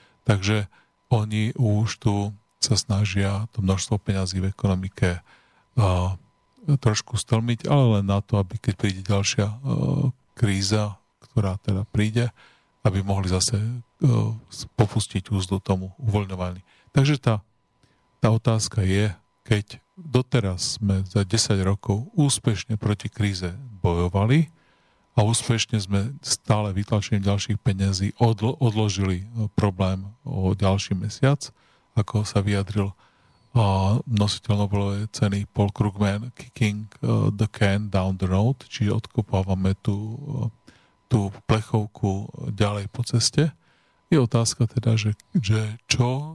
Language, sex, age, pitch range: Slovak, male, 40-59, 100-120 Hz